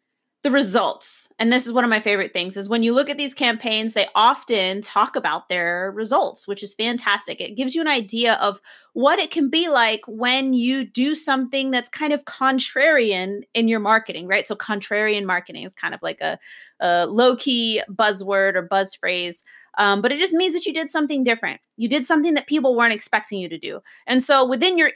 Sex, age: female, 30-49